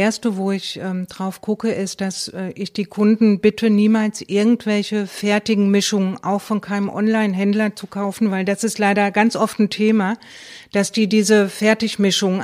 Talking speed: 175 wpm